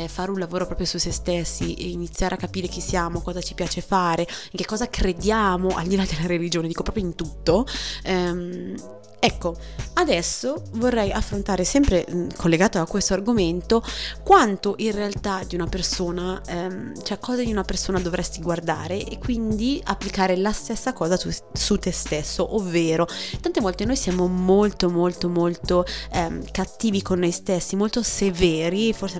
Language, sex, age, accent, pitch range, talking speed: Italian, female, 20-39, native, 175-200 Hz, 165 wpm